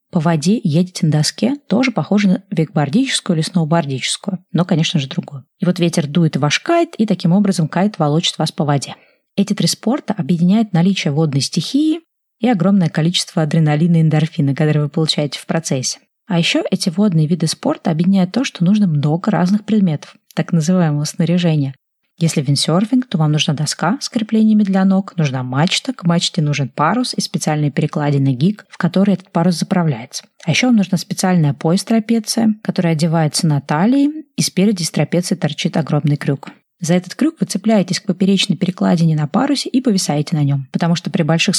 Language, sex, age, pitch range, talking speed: Russian, female, 30-49, 160-200 Hz, 175 wpm